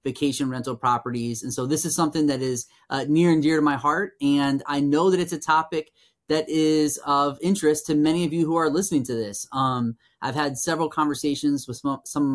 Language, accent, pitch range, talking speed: English, American, 130-155 Hz, 220 wpm